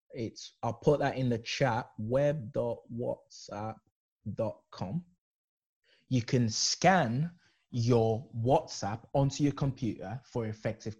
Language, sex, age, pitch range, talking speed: English, male, 20-39, 110-140 Hz, 100 wpm